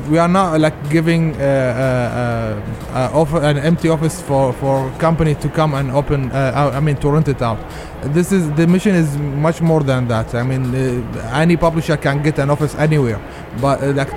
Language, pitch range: English, 135-165 Hz